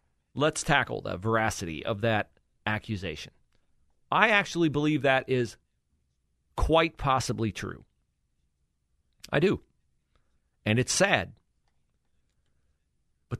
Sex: male